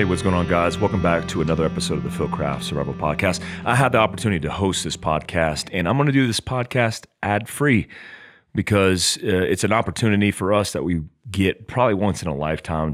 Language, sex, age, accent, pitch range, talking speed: English, male, 30-49, American, 80-100 Hz, 215 wpm